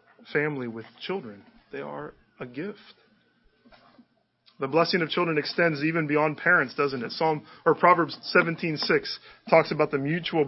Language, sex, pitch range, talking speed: English, male, 140-175 Hz, 145 wpm